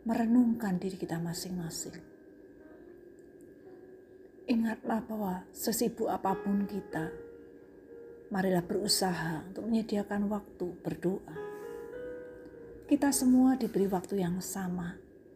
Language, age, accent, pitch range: Indonesian, 50-69, native, 180-245 Hz